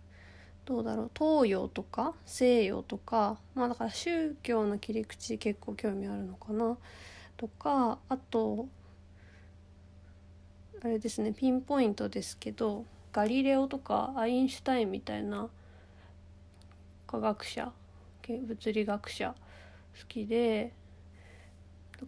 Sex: female